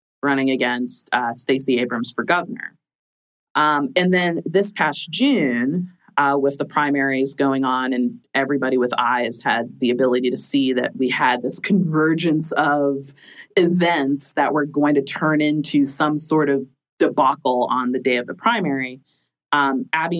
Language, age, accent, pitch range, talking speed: English, 20-39, American, 135-175 Hz, 155 wpm